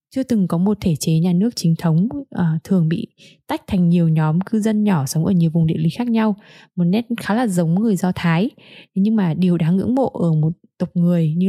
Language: Vietnamese